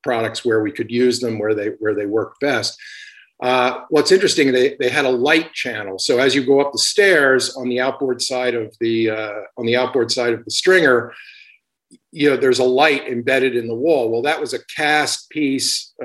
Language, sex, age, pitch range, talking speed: English, male, 50-69, 115-140 Hz, 215 wpm